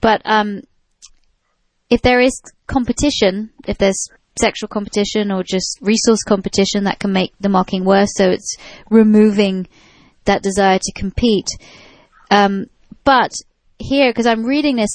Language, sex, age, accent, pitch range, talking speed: English, female, 30-49, British, 195-225 Hz, 135 wpm